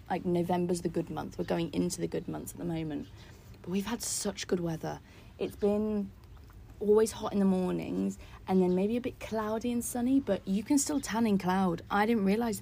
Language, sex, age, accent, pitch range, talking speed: English, female, 30-49, British, 155-215 Hz, 215 wpm